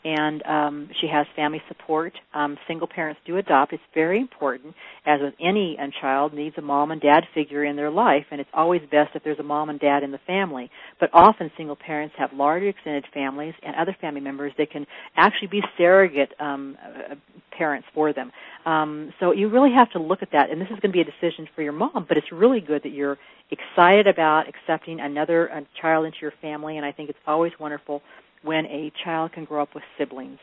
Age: 50-69